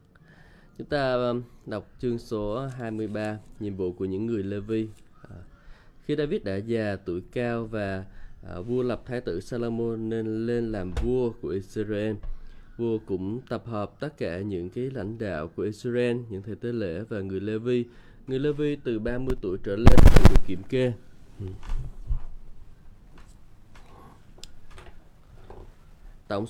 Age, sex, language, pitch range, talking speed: 20-39, male, Vietnamese, 100-125 Hz, 145 wpm